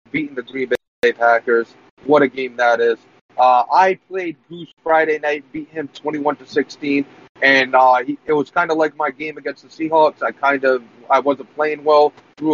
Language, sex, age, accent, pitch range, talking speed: English, male, 30-49, American, 125-150 Hz, 200 wpm